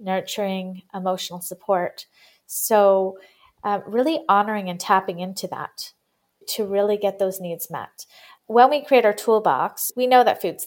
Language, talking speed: English, 145 wpm